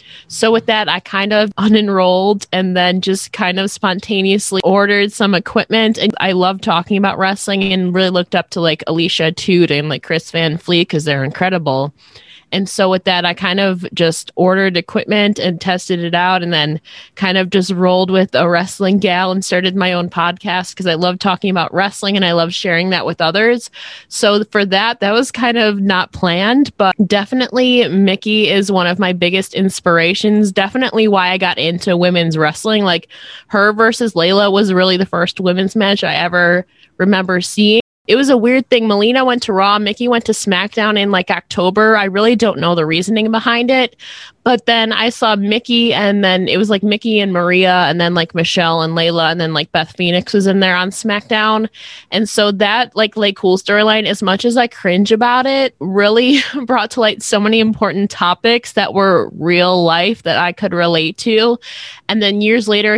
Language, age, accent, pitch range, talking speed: English, 20-39, American, 180-215 Hz, 195 wpm